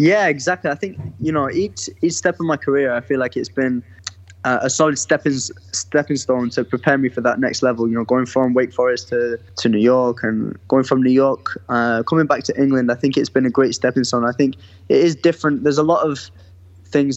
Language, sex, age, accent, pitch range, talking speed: English, male, 20-39, British, 120-135 Hz, 240 wpm